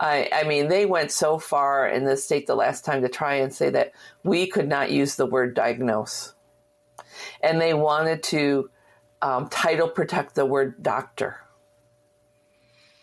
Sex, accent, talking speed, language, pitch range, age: female, American, 160 wpm, English, 140-180 Hz, 50-69